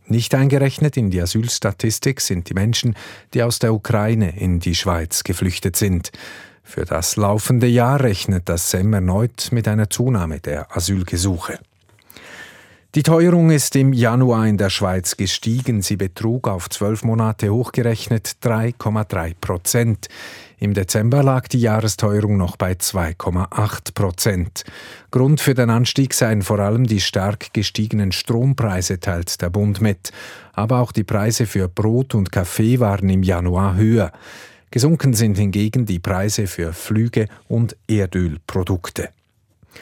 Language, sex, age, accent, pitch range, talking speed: German, male, 50-69, Swiss, 95-120 Hz, 135 wpm